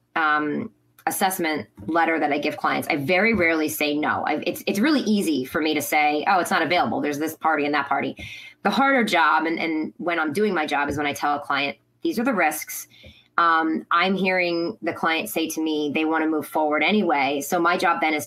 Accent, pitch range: American, 150-185 Hz